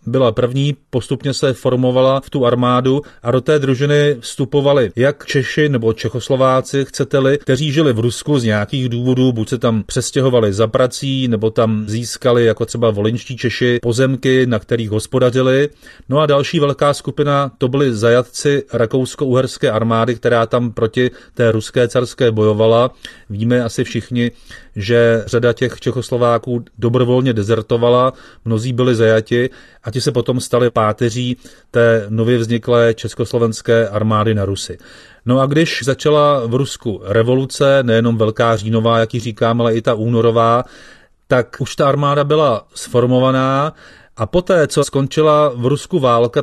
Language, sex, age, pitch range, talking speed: Czech, male, 30-49, 115-135 Hz, 145 wpm